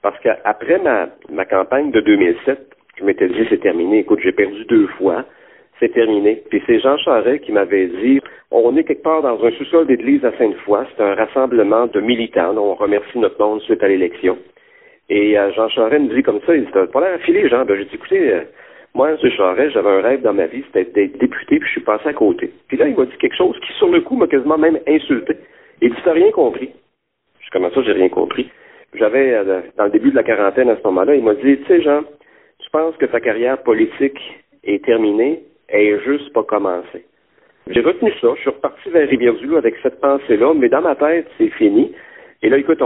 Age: 50-69